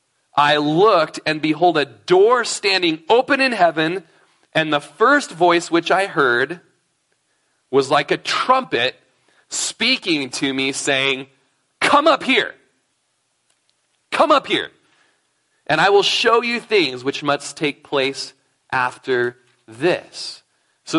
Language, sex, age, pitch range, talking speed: English, male, 30-49, 135-195 Hz, 125 wpm